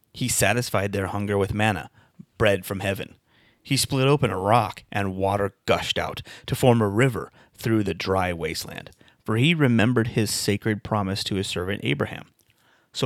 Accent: American